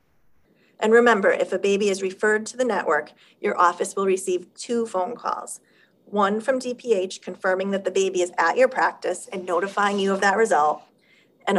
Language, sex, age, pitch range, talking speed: English, female, 40-59, 180-230 Hz, 180 wpm